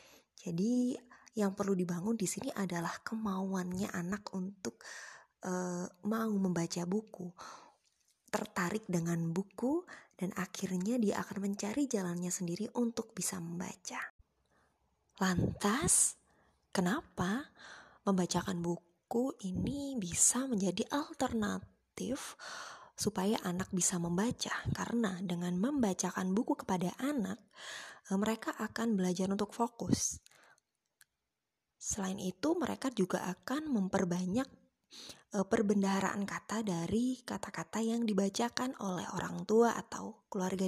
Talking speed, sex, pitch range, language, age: 100 wpm, female, 185-235 Hz, English, 20-39